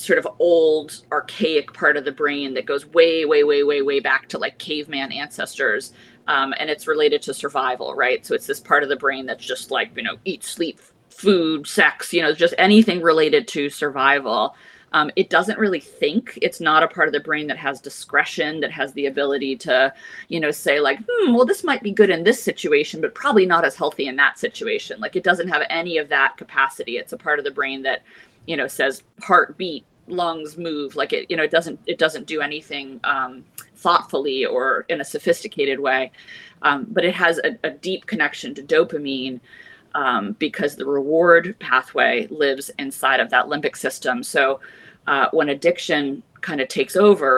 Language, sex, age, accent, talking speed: English, female, 30-49, American, 200 wpm